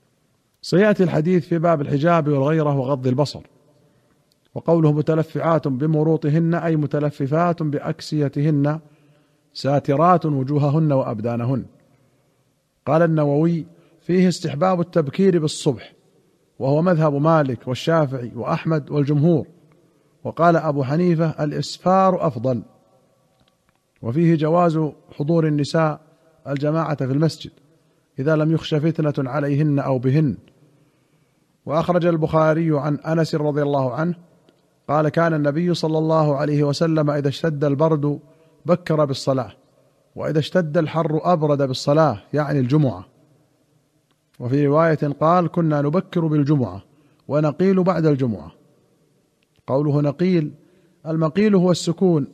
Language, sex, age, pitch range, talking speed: Arabic, male, 40-59, 145-165 Hz, 100 wpm